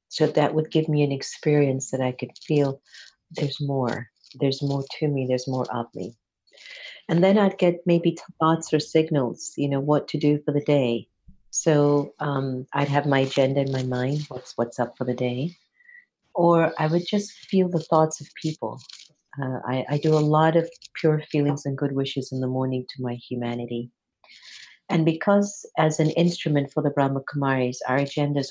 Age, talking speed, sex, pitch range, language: 50-69, 190 wpm, female, 135-160 Hz, English